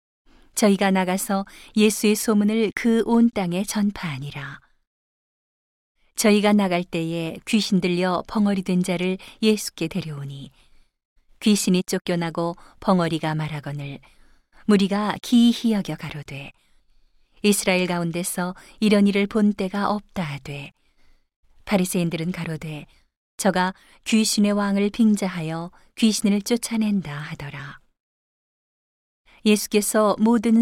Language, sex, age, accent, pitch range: Korean, female, 40-59, native, 165-210 Hz